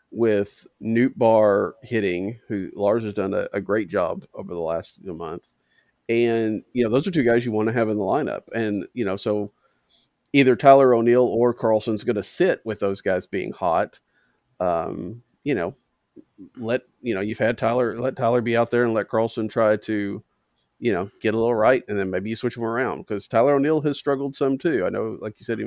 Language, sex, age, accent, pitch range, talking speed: English, male, 40-59, American, 105-125 Hz, 215 wpm